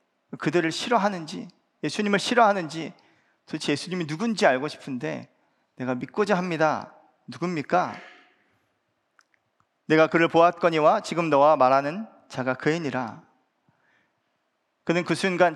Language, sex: Korean, male